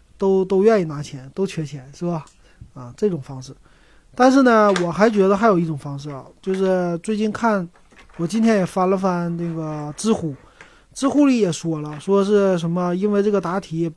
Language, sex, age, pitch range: Chinese, male, 30-49, 155-200 Hz